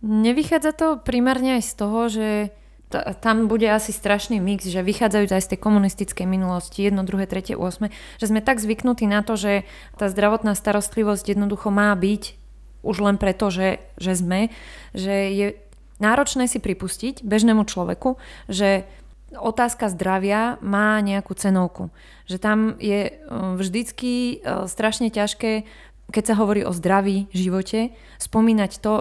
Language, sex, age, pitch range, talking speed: Slovak, female, 20-39, 190-220 Hz, 145 wpm